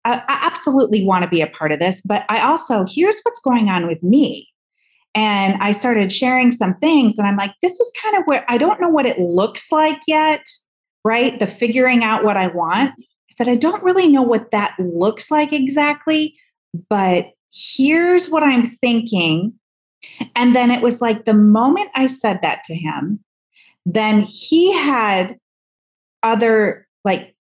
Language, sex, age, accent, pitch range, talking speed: English, female, 30-49, American, 195-280 Hz, 175 wpm